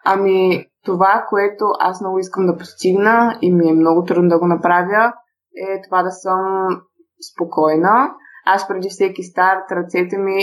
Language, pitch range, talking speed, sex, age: Bulgarian, 180-210 Hz, 155 wpm, female, 20-39